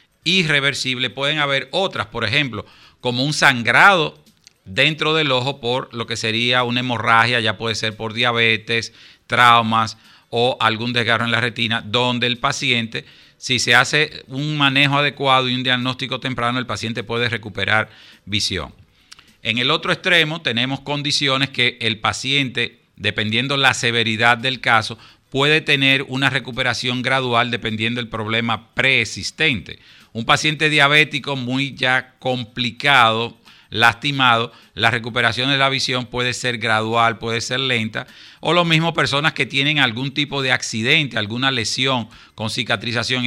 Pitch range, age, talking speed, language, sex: 115-135 Hz, 50-69, 145 wpm, Spanish, male